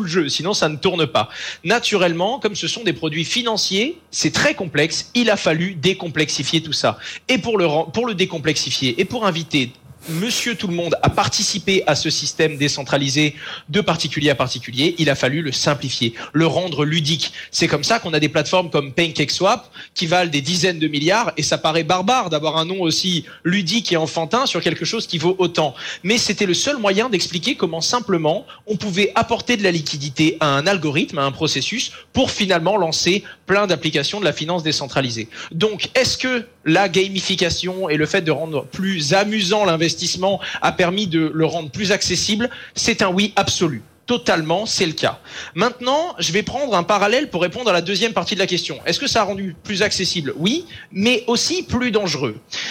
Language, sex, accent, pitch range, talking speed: French, male, French, 155-205 Hz, 190 wpm